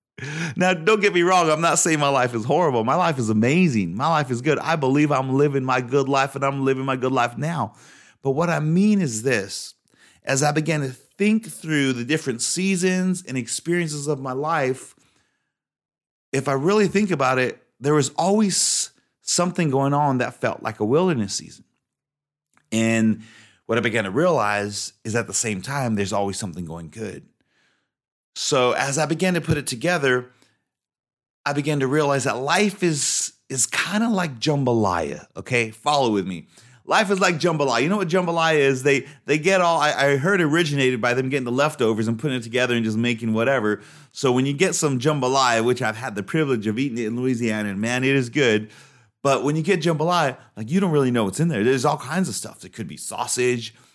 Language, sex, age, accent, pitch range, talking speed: English, male, 30-49, American, 120-160 Hz, 205 wpm